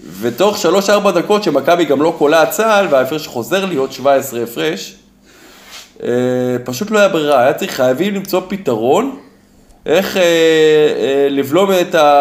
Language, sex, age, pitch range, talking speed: Hebrew, male, 20-39, 130-190 Hz, 120 wpm